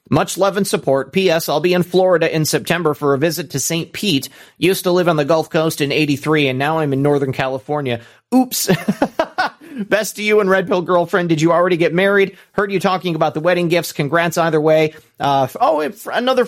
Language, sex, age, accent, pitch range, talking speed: English, male, 30-49, American, 140-180 Hz, 210 wpm